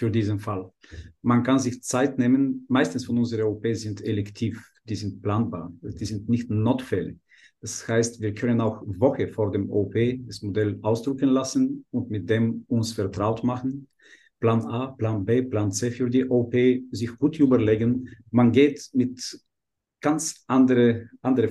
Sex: male